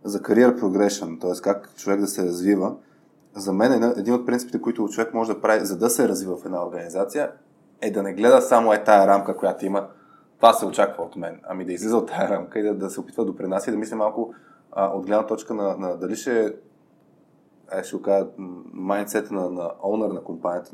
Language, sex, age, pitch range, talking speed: Bulgarian, male, 20-39, 100-135 Hz, 210 wpm